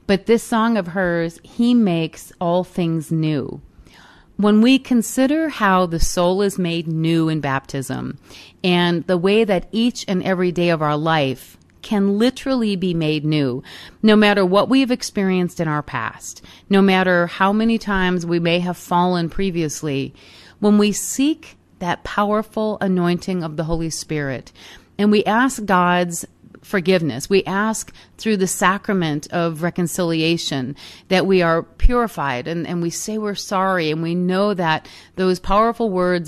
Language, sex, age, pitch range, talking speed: English, female, 40-59, 160-200 Hz, 155 wpm